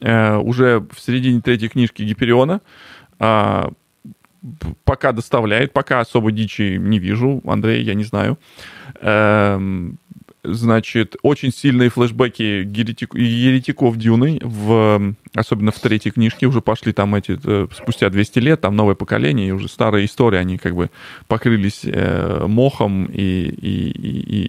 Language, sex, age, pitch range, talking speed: English, male, 20-39, 105-125 Hz, 130 wpm